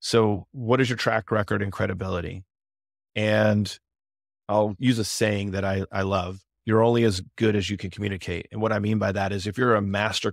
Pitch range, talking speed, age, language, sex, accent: 95-110 Hz, 210 wpm, 30-49, English, male, American